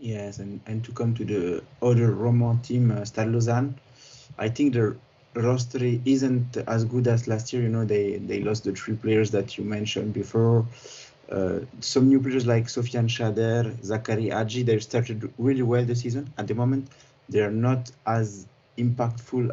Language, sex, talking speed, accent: English, male, 180 wpm, French